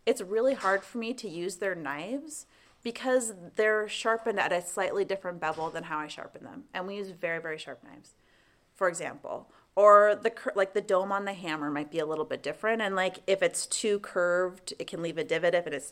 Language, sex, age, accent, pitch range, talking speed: English, female, 30-49, American, 170-225 Hz, 220 wpm